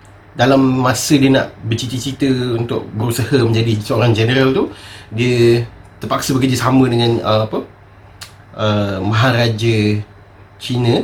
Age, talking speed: 30-49, 110 wpm